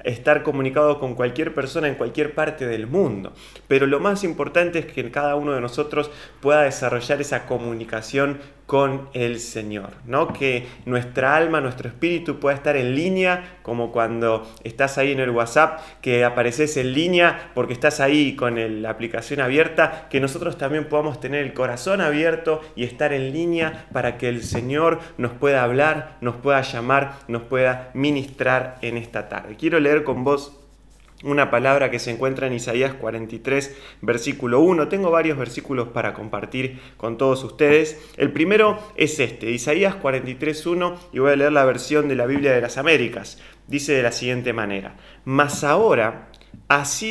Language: Spanish